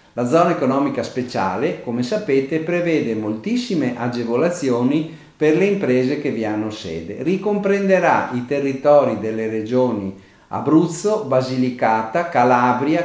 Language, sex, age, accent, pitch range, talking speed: Italian, male, 50-69, native, 115-175 Hz, 110 wpm